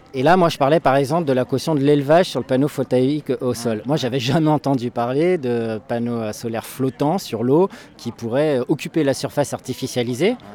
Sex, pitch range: male, 120-150 Hz